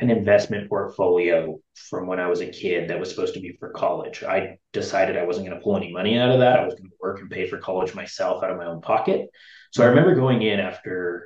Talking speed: 260 wpm